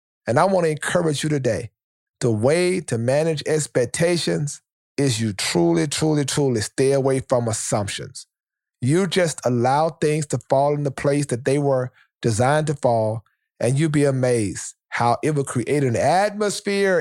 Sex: male